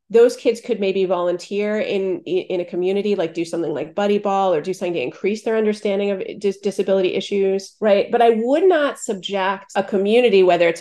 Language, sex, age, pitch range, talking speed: English, female, 30-49, 180-225 Hz, 200 wpm